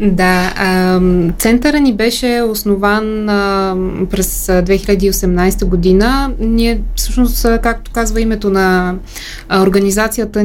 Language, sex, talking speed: Bulgarian, female, 85 wpm